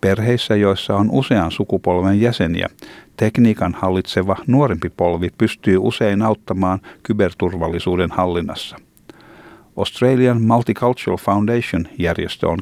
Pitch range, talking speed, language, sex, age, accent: 90-110 Hz, 90 wpm, Finnish, male, 60-79, native